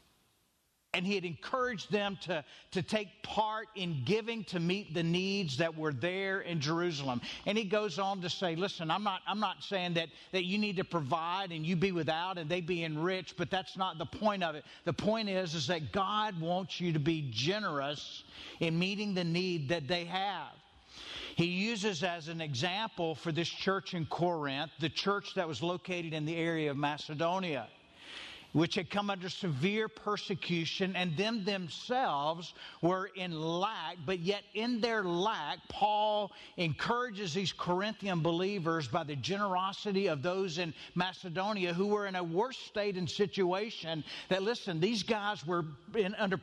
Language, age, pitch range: English, 50-69, 170-205 Hz